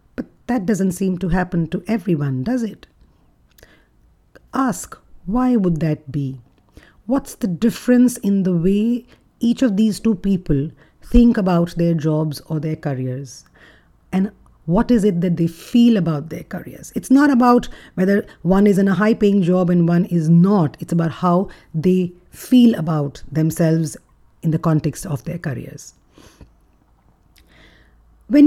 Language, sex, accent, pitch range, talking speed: English, female, Indian, 155-200 Hz, 150 wpm